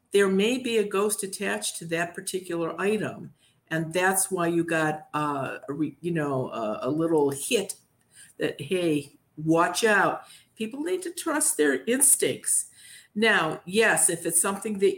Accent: American